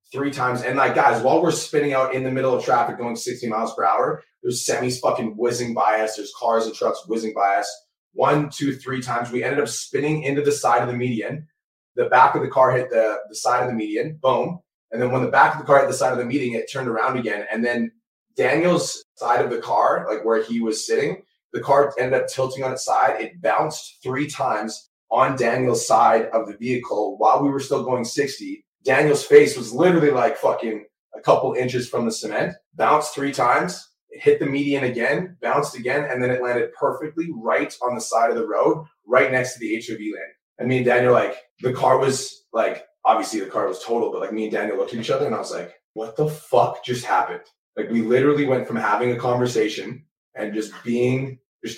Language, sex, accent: English, male, American